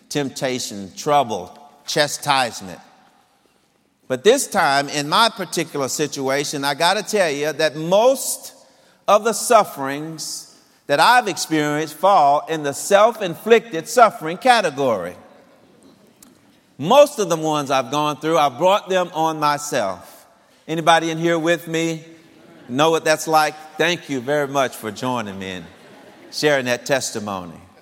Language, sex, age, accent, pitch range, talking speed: English, male, 50-69, American, 145-190 Hz, 130 wpm